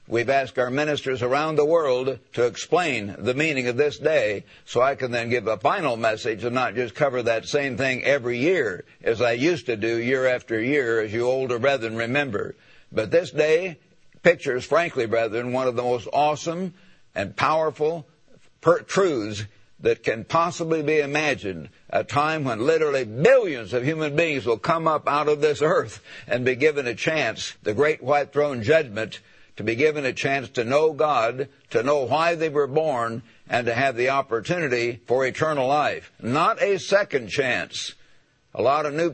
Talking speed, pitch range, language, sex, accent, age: 180 wpm, 125-160 Hz, English, male, American, 60-79